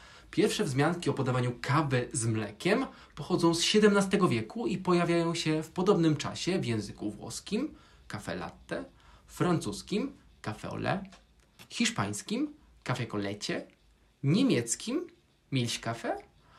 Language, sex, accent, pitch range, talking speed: Polish, male, native, 125-180 Hz, 115 wpm